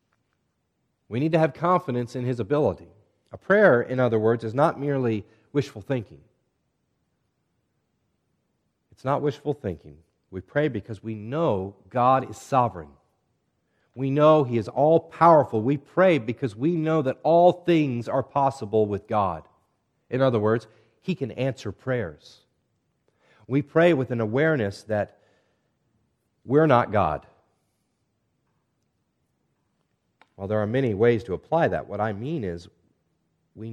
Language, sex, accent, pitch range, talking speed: English, male, American, 100-140 Hz, 135 wpm